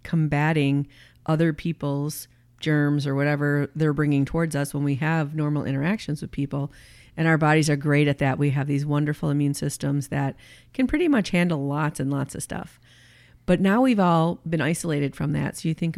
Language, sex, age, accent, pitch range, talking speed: English, female, 40-59, American, 140-160 Hz, 190 wpm